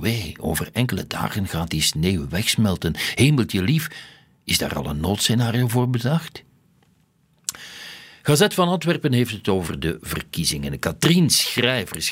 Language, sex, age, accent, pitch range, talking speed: Dutch, male, 60-79, Dutch, 85-130 Hz, 130 wpm